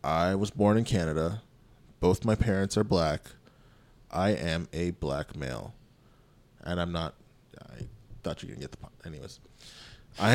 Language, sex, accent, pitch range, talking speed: English, male, American, 105-130 Hz, 170 wpm